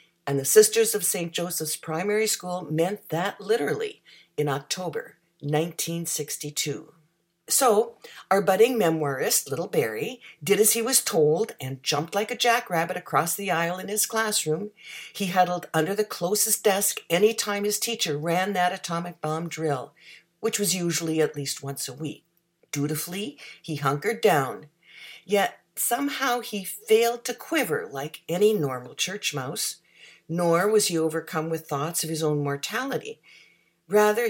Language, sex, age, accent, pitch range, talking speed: English, female, 60-79, American, 160-220 Hz, 150 wpm